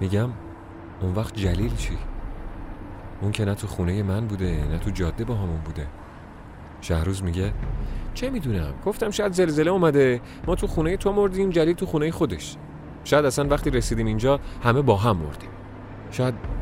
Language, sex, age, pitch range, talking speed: Persian, male, 30-49, 95-125 Hz, 165 wpm